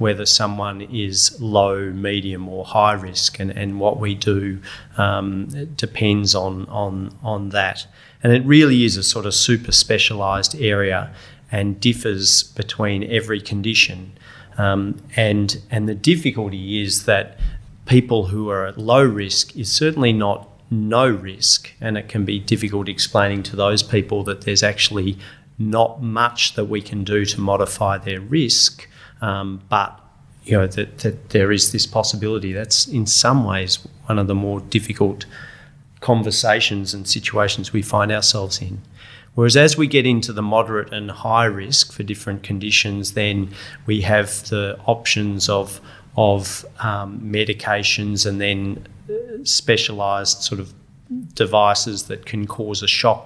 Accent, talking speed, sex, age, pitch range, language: Australian, 150 wpm, male, 30-49, 100-115 Hz, English